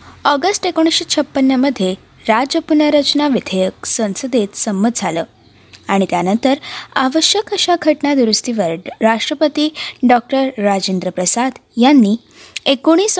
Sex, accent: female, native